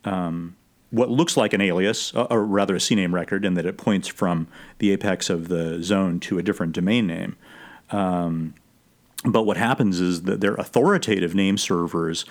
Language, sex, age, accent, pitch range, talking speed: English, male, 40-59, American, 90-105 Hz, 175 wpm